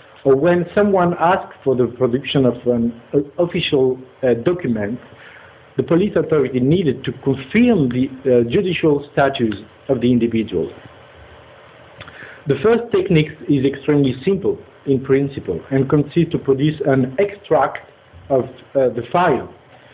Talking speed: 130 wpm